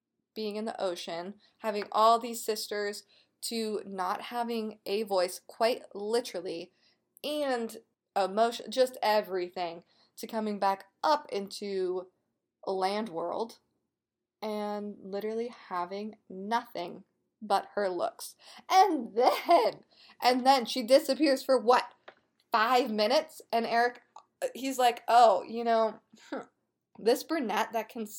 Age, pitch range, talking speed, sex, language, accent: 20-39, 205-255 Hz, 115 wpm, female, English, American